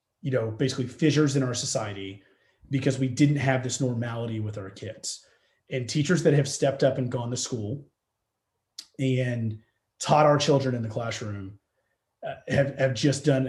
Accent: American